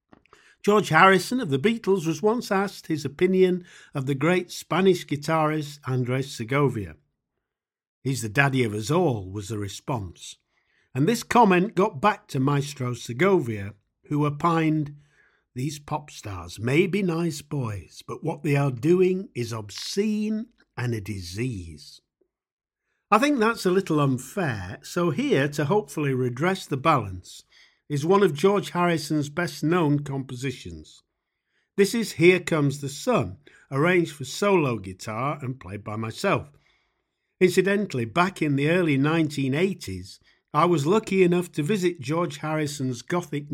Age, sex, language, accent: 50-69, male, English, British